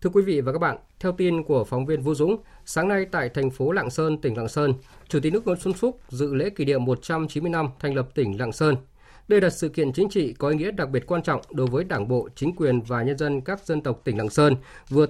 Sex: male